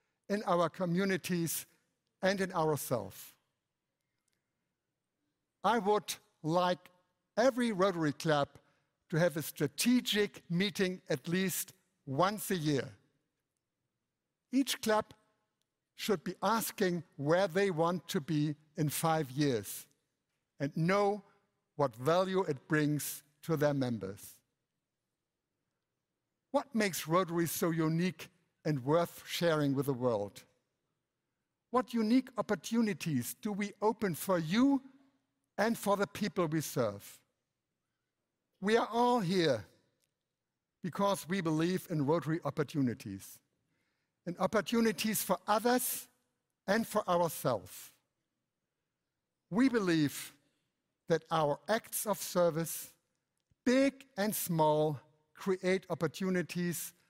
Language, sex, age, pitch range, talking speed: Indonesian, male, 60-79, 150-200 Hz, 105 wpm